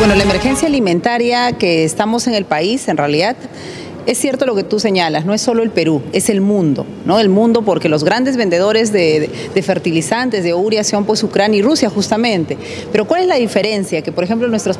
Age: 40-59